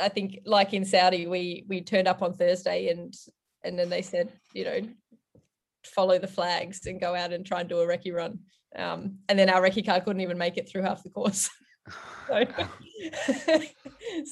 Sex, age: female, 10-29